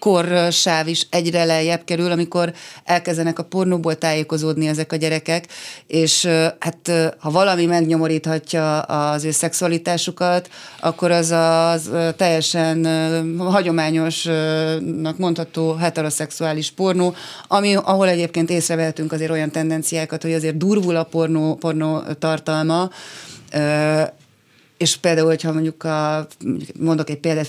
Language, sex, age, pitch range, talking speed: Hungarian, female, 30-49, 150-165 Hz, 110 wpm